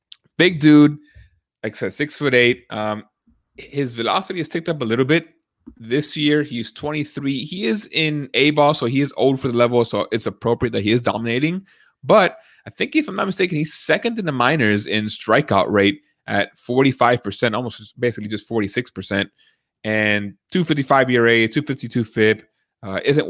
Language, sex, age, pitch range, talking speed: English, male, 30-49, 105-140 Hz, 170 wpm